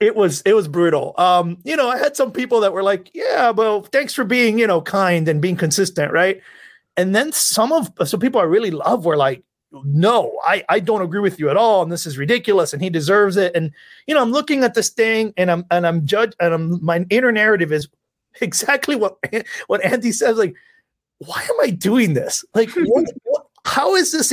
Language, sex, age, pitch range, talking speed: English, male, 30-49, 175-235 Hz, 225 wpm